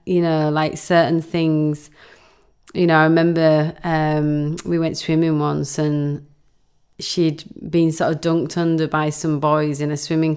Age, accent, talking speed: 30-49, British, 155 wpm